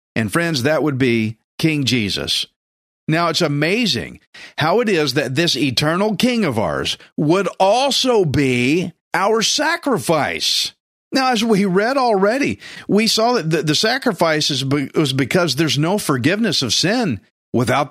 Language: English